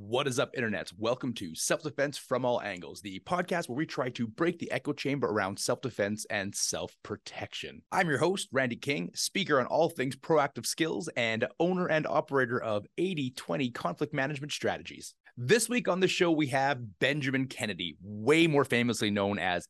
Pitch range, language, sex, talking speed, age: 110-150 Hz, English, male, 175 wpm, 30-49